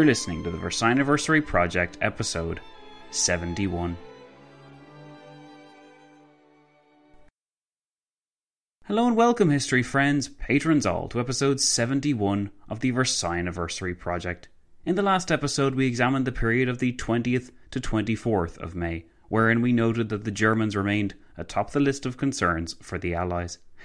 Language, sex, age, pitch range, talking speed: English, male, 30-49, 90-130 Hz, 135 wpm